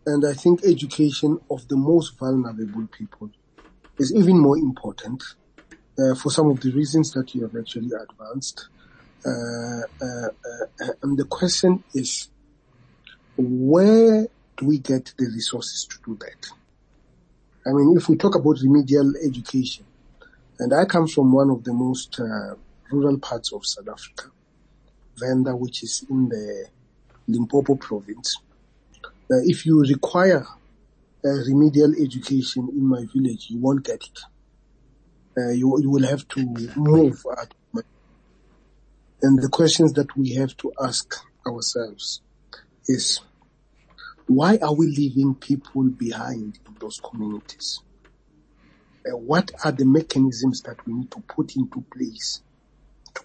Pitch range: 130-155 Hz